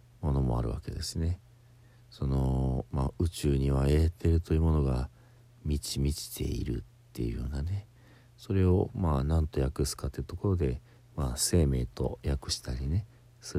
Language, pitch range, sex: Japanese, 65-115 Hz, male